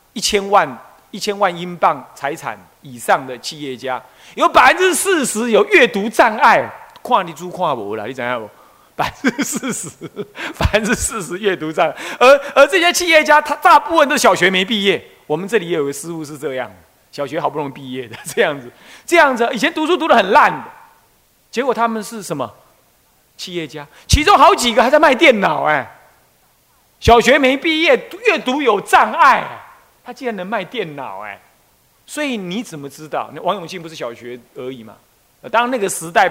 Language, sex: Chinese, male